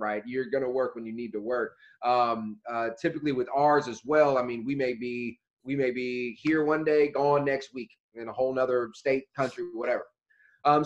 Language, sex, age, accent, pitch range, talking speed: English, male, 30-49, American, 120-145 Hz, 215 wpm